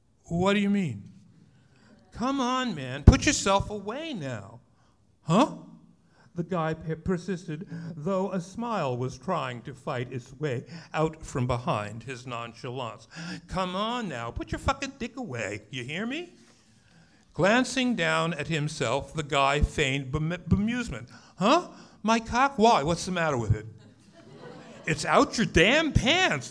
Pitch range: 135-210 Hz